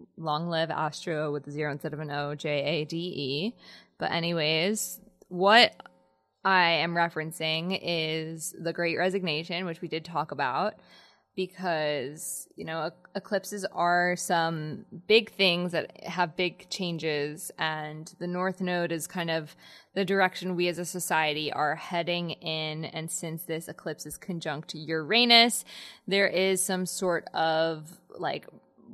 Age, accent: 20-39, American